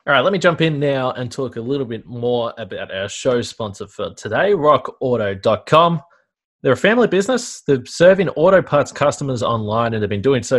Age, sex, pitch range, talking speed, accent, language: 20-39, male, 115-150 Hz, 200 wpm, Australian, English